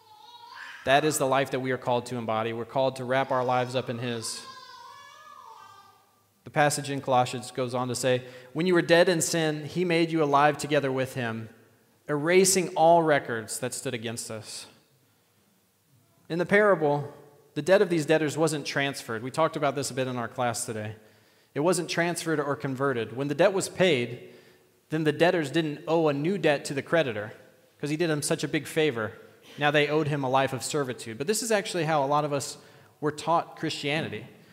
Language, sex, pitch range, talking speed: English, male, 125-165 Hz, 200 wpm